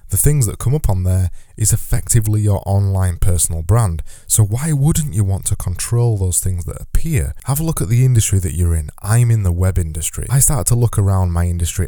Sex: male